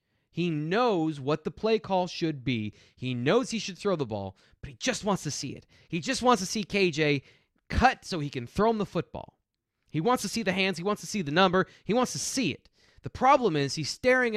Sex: male